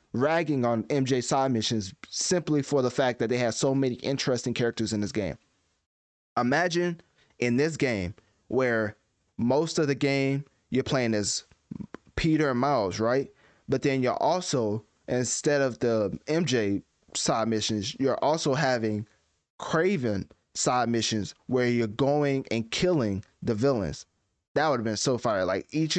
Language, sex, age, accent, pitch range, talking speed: English, male, 20-39, American, 110-140 Hz, 150 wpm